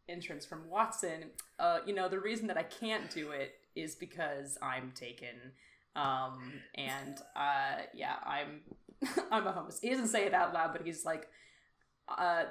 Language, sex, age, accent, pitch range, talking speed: English, female, 20-39, American, 165-235 Hz, 170 wpm